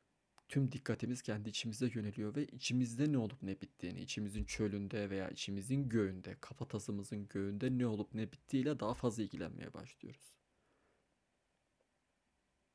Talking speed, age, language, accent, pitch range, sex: 125 wpm, 30-49, Turkish, native, 105-125 Hz, male